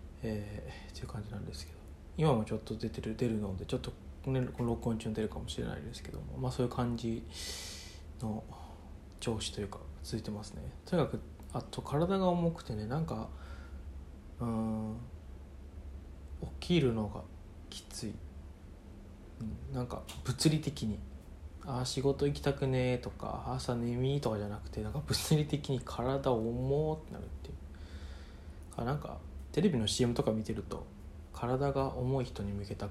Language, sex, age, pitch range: Japanese, male, 20-39, 80-130 Hz